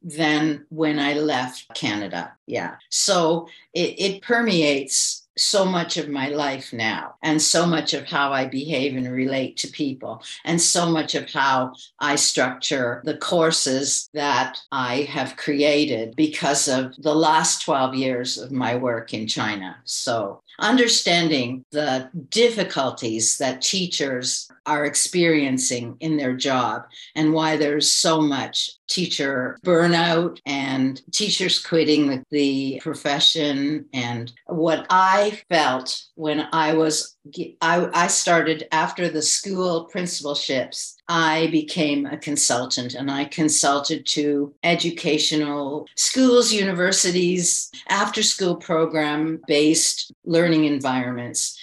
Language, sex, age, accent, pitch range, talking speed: English, female, 60-79, American, 140-165 Hz, 120 wpm